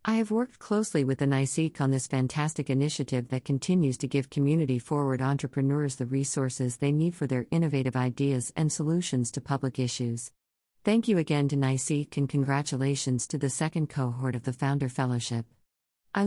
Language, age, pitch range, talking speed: English, 50-69, 130-150 Hz, 175 wpm